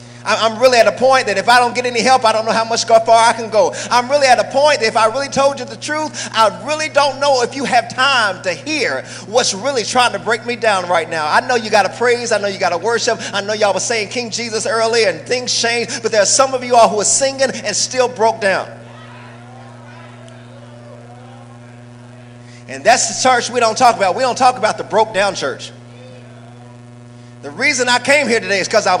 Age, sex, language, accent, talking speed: 30-49, male, English, American, 235 wpm